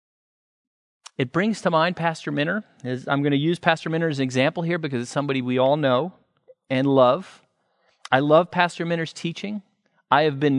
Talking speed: 180 wpm